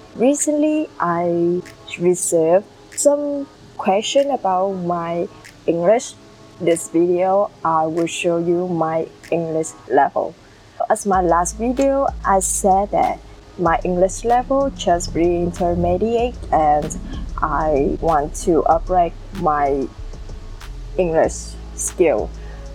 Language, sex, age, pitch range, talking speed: Vietnamese, female, 20-39, 165-205 Hz, 100 wpm